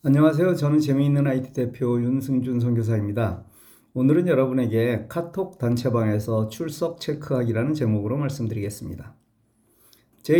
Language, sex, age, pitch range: Korean, male, 40-59, 115-140 Hz